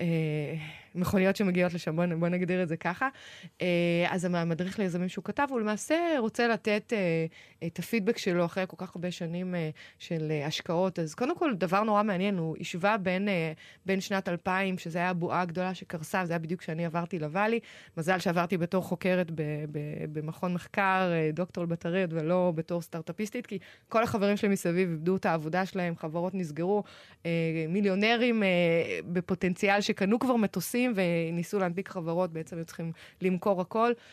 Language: Hebrew